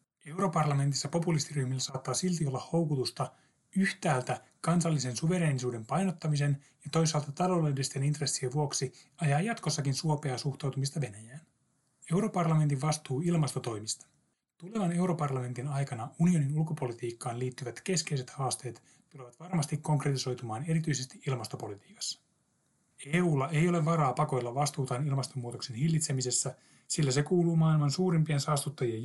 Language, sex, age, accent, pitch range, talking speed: Finnish, male, 30-49, native, 135-160 Hz, 105 wpm